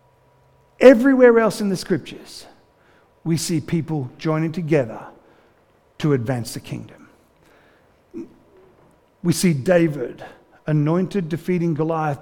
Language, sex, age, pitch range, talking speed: English, male, 50-69, 145-180 Hz, 100 wpm